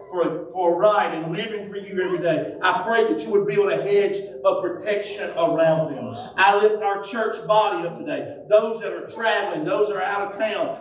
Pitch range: 135-210 Hz